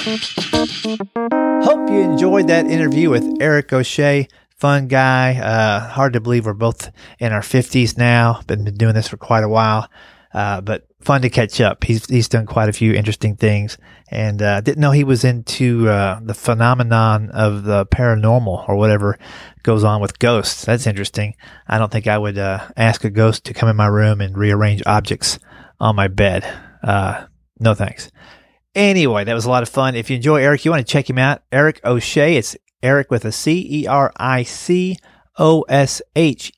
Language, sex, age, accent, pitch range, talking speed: English, male, 30-49, American, 110-135 Hz, 190 wpm